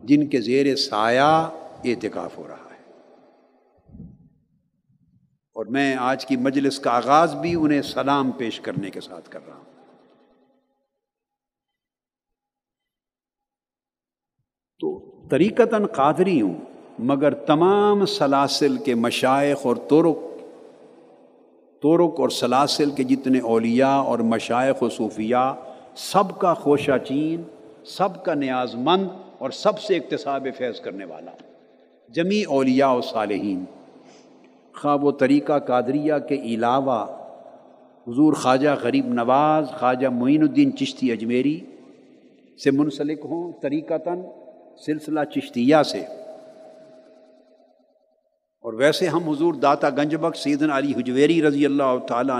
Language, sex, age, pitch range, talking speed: Urdu, male, 50-69, 130-185 Hz, 115 wpm